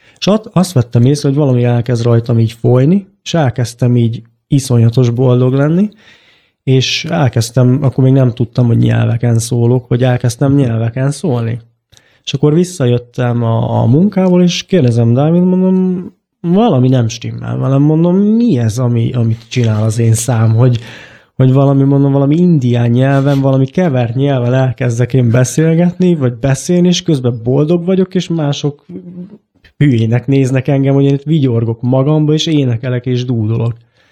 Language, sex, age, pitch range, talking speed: Hungarian, male, 20-39, 120-150 Hz, 150 wpm